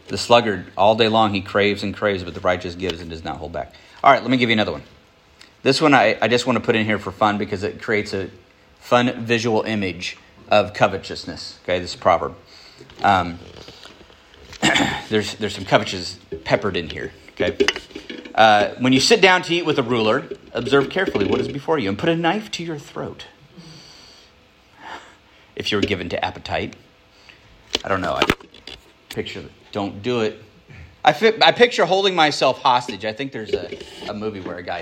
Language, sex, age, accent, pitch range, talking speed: English, male, 40-59, American, 105-140 Hz, 195 wpm